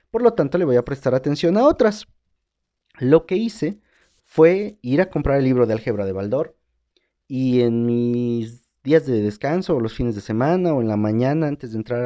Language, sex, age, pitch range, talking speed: Spanish, male, 40-59, 115-170 Hz, 205 wpm